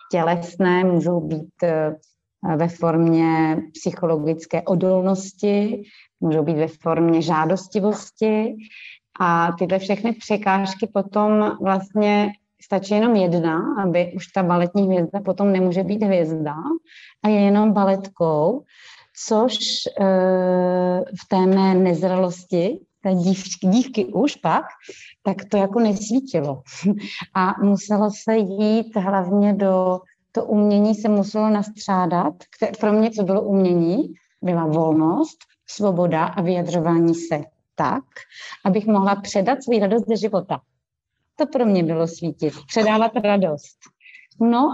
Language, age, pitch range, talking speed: Czech, 30-49, 175-215 Hz, 115 wpm